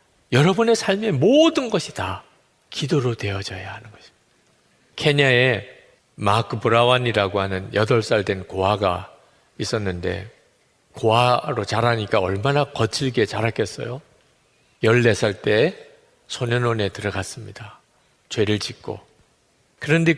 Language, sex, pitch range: Korean, male, 100-130 Hz